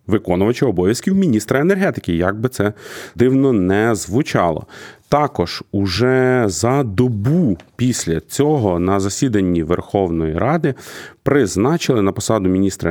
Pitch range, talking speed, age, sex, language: 95-120 Hz, 110 wpm, 30-49, male, Ukrainian